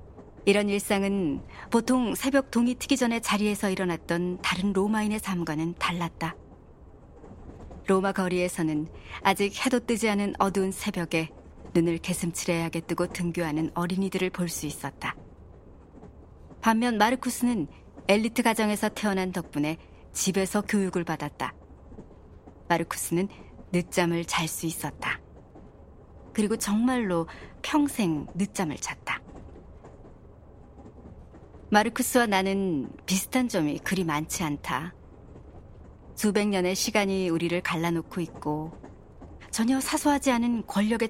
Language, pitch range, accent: Korean, 155-210 Hz, native